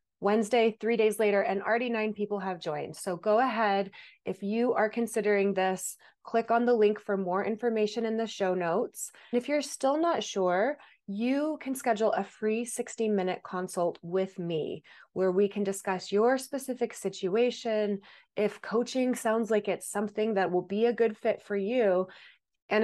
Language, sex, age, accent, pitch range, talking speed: English, female, 20-39, American, 185-235 Hz, 175 wpm